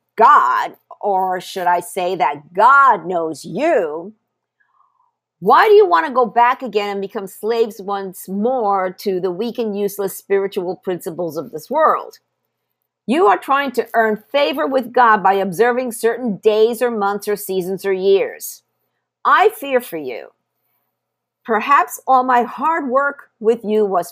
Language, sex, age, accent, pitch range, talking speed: English, female, 50-69, American, 190-265 Hz, 155 wpm